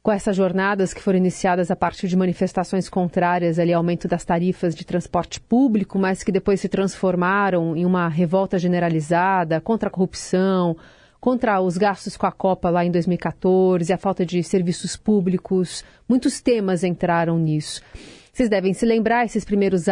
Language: Portuguese